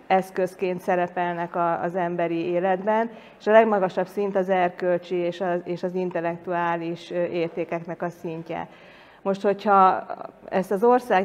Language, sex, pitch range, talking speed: Hungarian, female, 180-205 Hz, 115 wpm